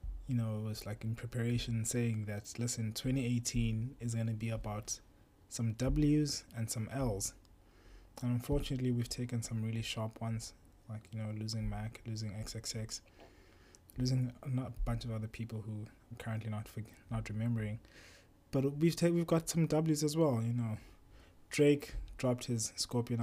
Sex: male